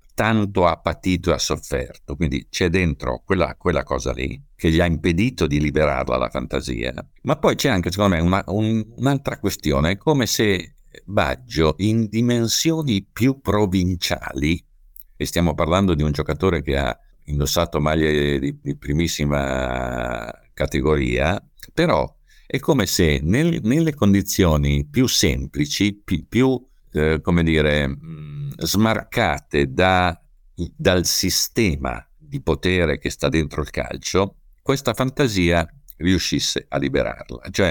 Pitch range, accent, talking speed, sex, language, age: 75-105 Hz, native, 125 wpm, male, Italian, 60-79